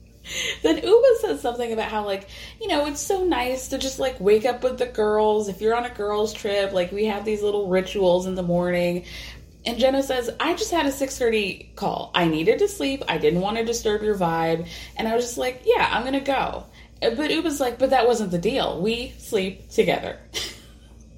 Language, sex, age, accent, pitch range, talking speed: English, female, 20-39, American, 170-250 Hz, 215 wpm